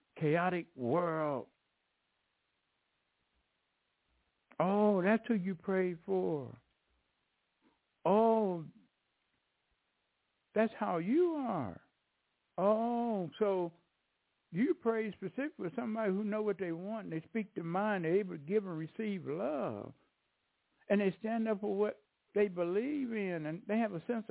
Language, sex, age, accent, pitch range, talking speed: English, male, 60-79, American, 180-230 Hz, 125 wpm